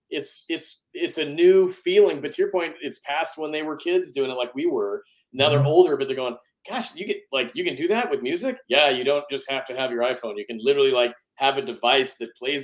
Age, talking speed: 30-49, 260 wpm